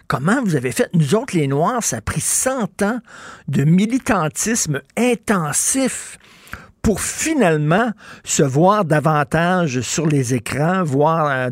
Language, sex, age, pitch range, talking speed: French, male, 50-69, 145-195 Hz, 135 wpm